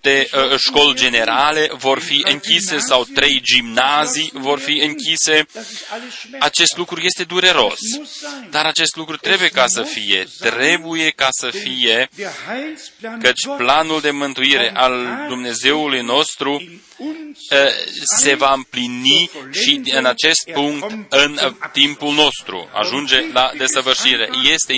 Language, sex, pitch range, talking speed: Romanian, male, 130-170 Hz, 115 wpm